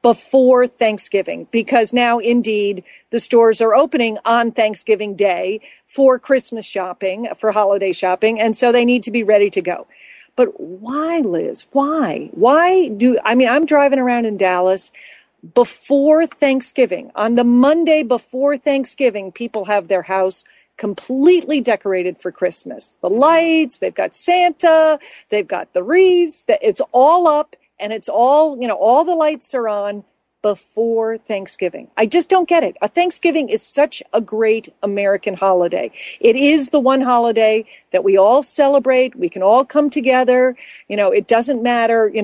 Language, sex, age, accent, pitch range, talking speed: English, female, 40-59, American, 215-290 Hz, 160 wpm